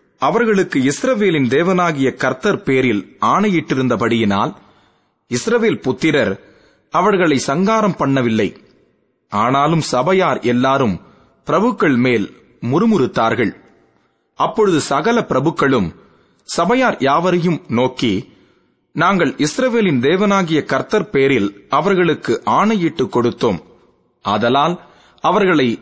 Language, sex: Tamil, male